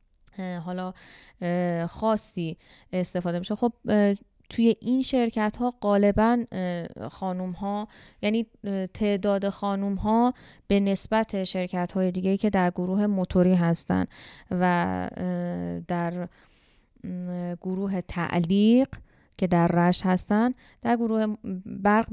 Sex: female